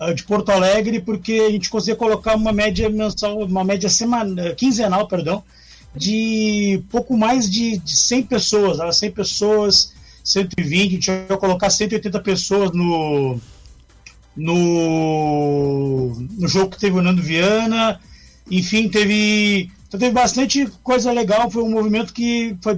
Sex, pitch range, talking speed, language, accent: male, 180-215 Hz, 140 wpm, Portuguese, Brazilian